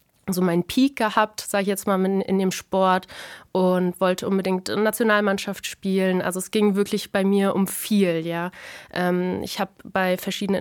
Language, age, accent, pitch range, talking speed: German, 20-39, German, 185-220 Hz, 180 wpm